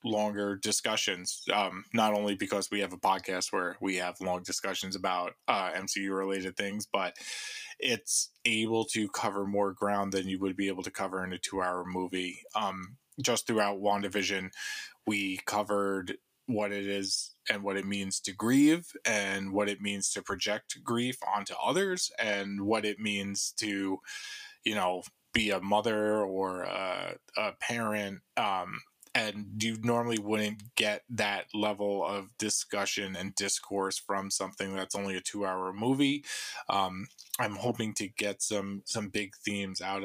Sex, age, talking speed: male, 20-39, 160 wpm